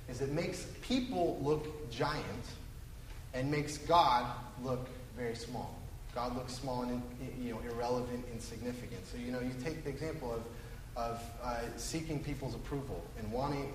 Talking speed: 155 wpm